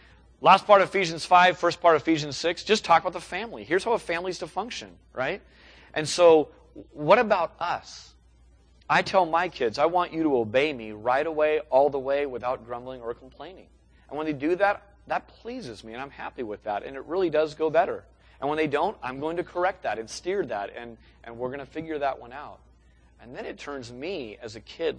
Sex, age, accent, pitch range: male, 30-49, American, 120-170 Hz